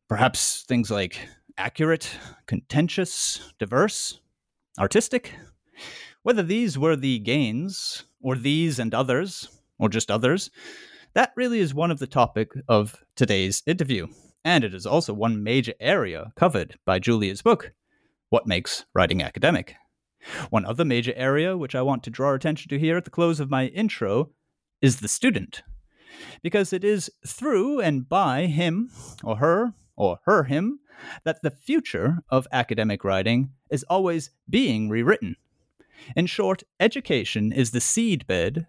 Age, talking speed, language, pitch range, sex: 30-49, 145 wpm, English, 120-180 Hz, male